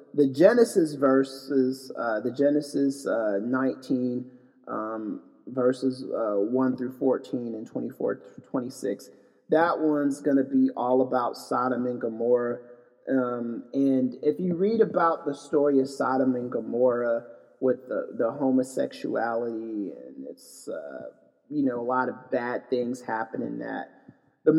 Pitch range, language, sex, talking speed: 125-150 Hz, English, male, 140 wpm